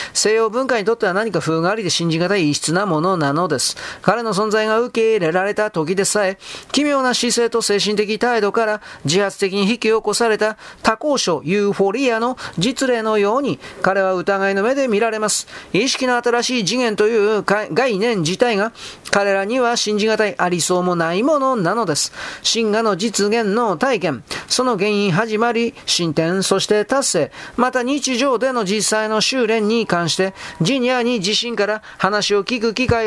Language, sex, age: Japanese, male, 40-59